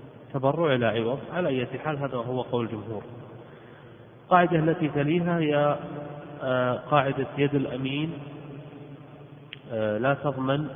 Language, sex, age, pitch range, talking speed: Arabic, male, 30-49, 130-145 Hz, 105 wpm